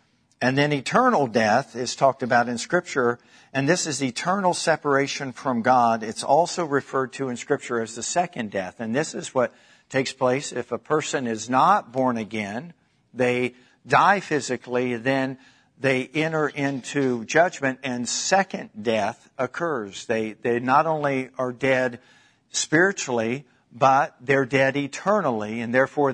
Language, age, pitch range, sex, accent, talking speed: English, 50-69, 120-150 Hz, male, American, 145 wpm